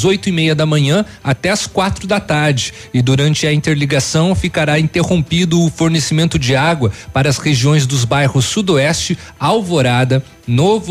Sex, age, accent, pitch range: male, 40-59, Brazilian, 130-170 Hz